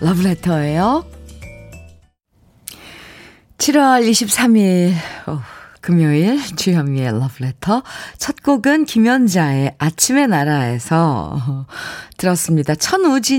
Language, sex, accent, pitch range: Korean, female, native, 150-225 Hz